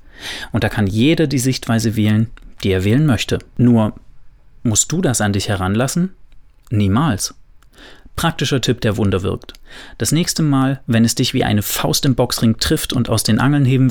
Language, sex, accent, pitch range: German, male, German, 105-130 Hz